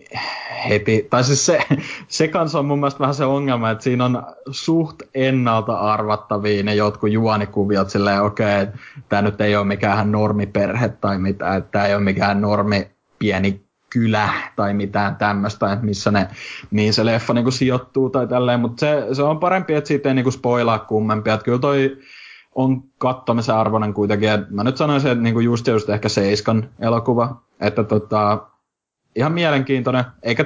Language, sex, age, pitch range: Finnish, male, 20-39, 105-125 Hz